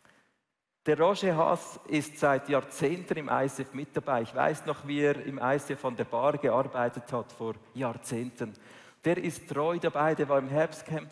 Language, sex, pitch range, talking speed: German, male, 135-165 Hz, 175 wpm